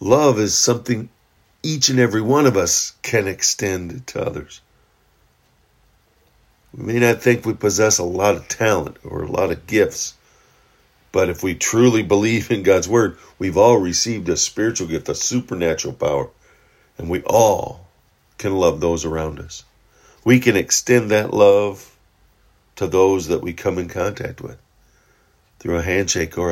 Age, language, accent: 50-69, English, American